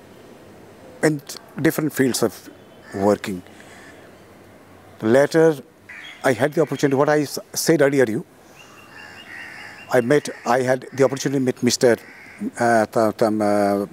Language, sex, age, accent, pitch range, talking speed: Hindi, male, 50-69, native, 120-160 Hz, 110 wpm